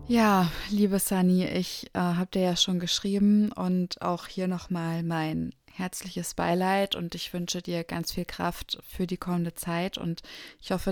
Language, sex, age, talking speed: German, female, 20-39, 170 wpm